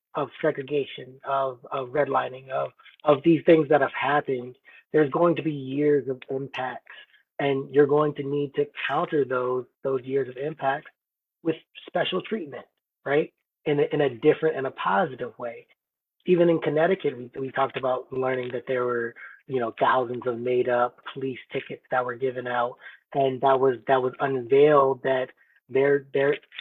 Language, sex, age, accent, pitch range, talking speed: English, male, 30-49, American, 130-155 Hz, 170 wpm